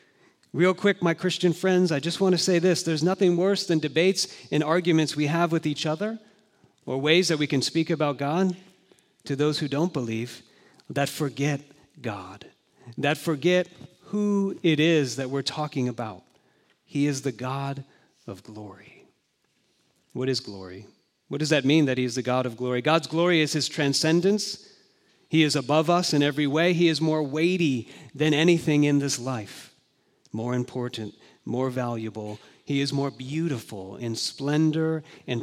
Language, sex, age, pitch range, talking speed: English, male, 40-59, 115-160 Hz, 170 wpm